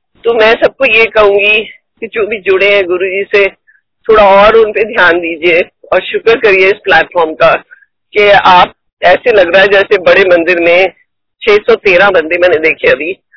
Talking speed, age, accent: 175 wpm, 50-69, native